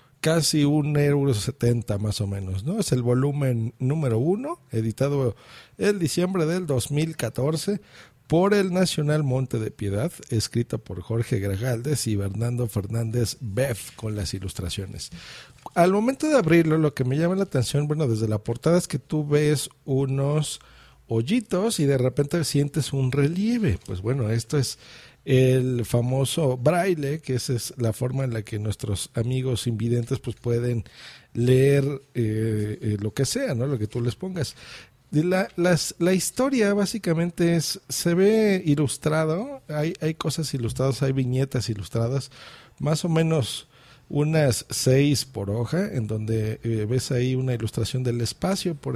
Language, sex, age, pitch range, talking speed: Spanish, male, 50-69, 120-160 Hz, 155 wpm